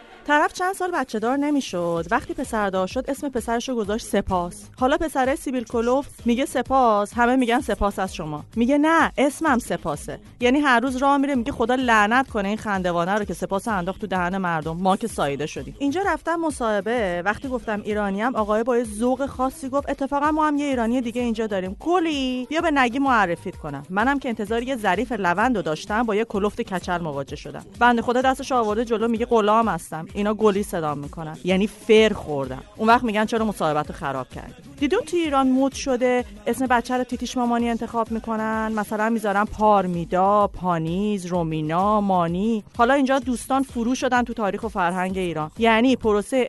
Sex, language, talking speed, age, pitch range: female, Persian, 180 wpm, 30-49, 190-255 Hz